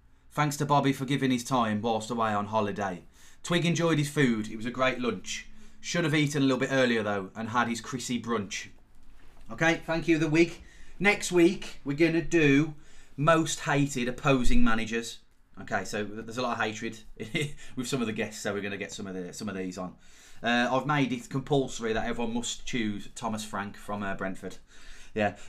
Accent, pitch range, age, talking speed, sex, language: British, 105-135 Hz, 30-49, 200 wpm, male, English